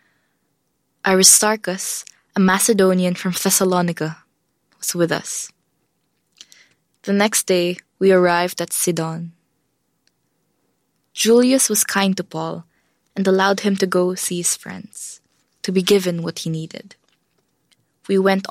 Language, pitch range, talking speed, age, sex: English, 175-200 Hz, 115 wpm, 20-39, female